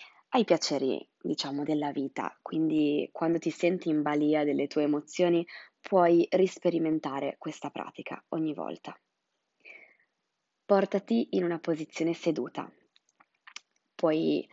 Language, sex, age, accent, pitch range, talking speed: Italian, female, 20-39, native, 160-200 Hz, 105 wpm